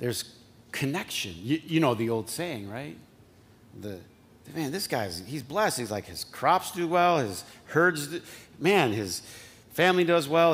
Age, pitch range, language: 40-59, 115-155 Hz, English